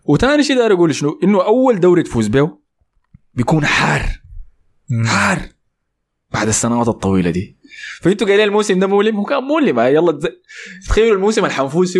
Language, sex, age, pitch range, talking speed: Arabic, male, 20-39, 100-160 Hz, 140 wpm